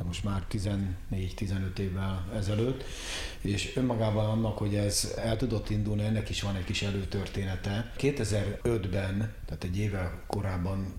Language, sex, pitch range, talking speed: Hungarian, male, 95-110 Hz, 130 wpm